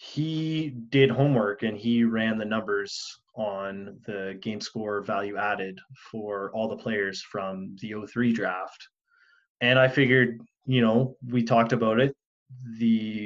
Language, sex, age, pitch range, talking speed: English, male, 20-39, 105-125 Hz, 145 wpm